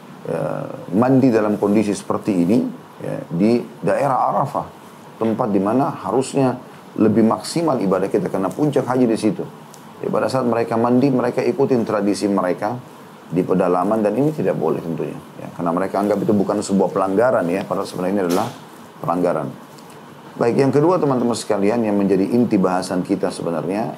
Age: 30-49